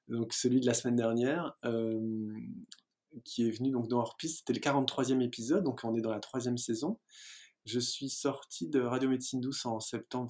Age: 20-39